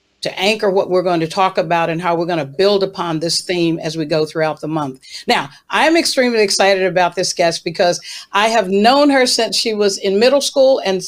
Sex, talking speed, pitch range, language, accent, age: female, 235 wpm, 180-220 Hz, English, American, 50-69